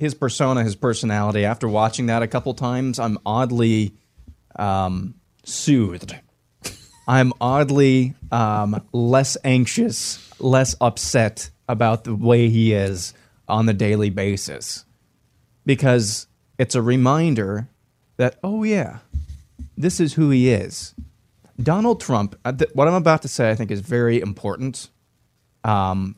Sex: male